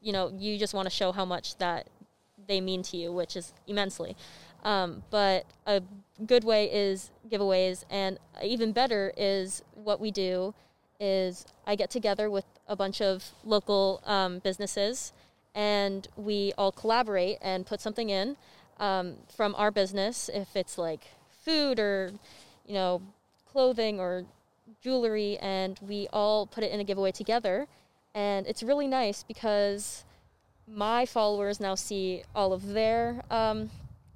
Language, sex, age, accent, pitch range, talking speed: English, female, 20-39, American, 190-220 Hz, 150 wpm